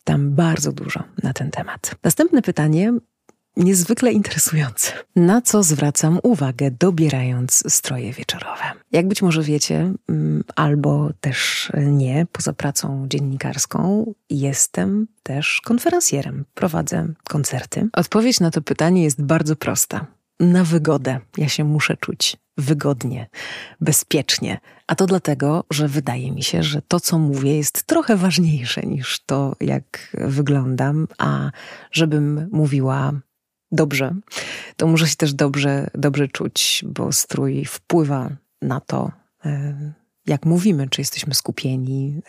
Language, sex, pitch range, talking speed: Polish, female, 140-175 Hz, 120 wpm